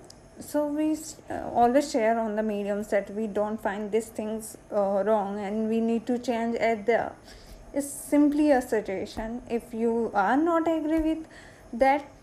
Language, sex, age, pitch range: Hindi, female, 20-39, 220-265 Hz